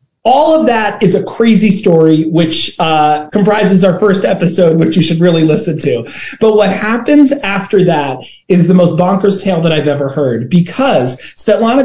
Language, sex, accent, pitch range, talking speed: English, male, American, 175-235 Hz, 175 wpm